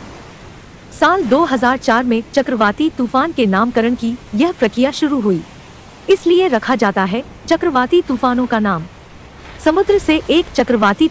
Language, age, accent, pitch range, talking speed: Hindi, 50-69, native, 225-305 Hz, 130 wpm